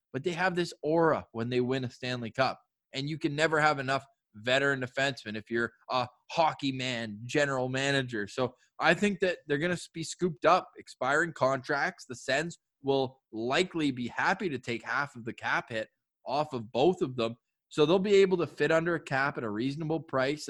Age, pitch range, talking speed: 20-39, 125-155 Hz, 200 wpm